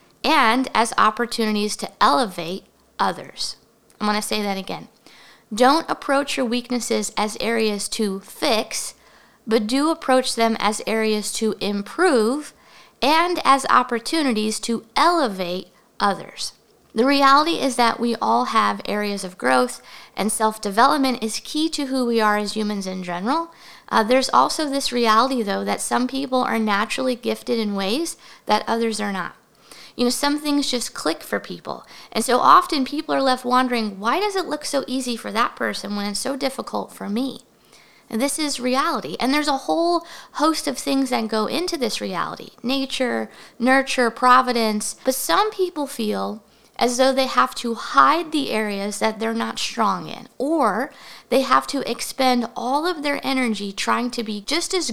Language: English